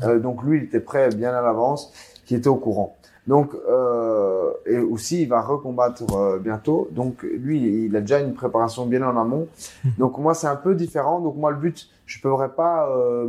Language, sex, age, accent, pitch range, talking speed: French, male, 20-39, French, 115-145 Hz, 210 wpm